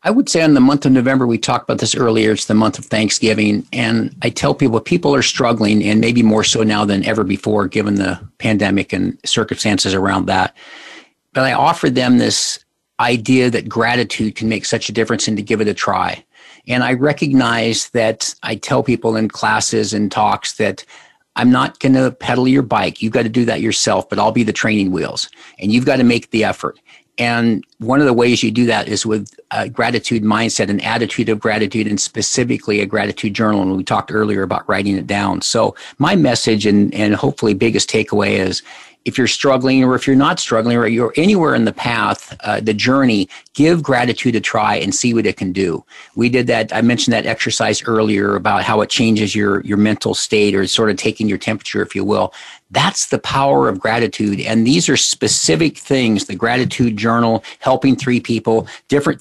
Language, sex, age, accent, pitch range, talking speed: English, male, 50-69, American, 105-125 Hz, 210 wpm